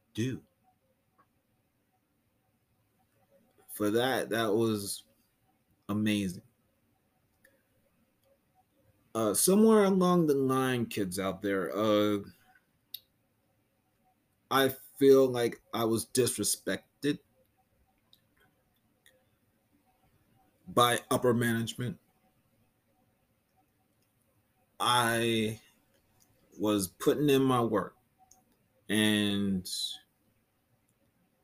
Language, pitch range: English, 105-115 Hz